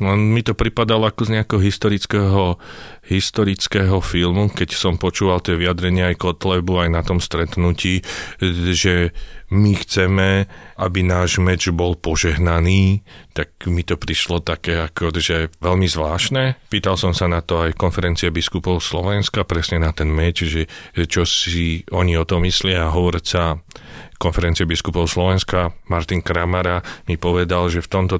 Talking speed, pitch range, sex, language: 150 wpm, 85-95 Hz, male, Slovak